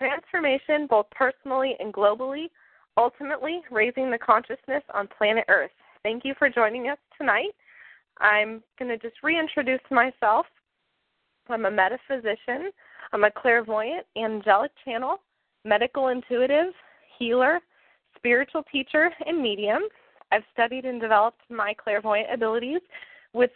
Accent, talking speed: American, 120 wpm